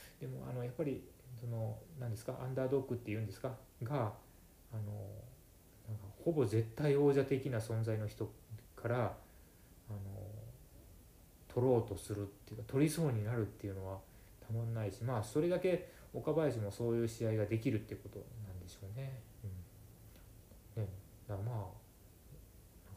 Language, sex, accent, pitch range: Japanese, male, native, 100-125 Hz